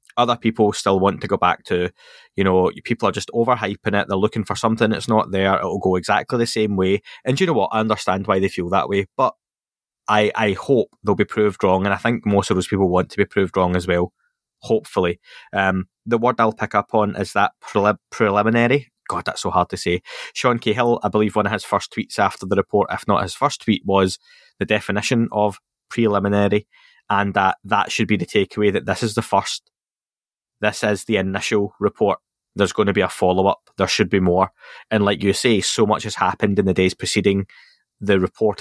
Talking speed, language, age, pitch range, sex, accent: 220 wpm, English, 20-39, 95-110 Hz, male, British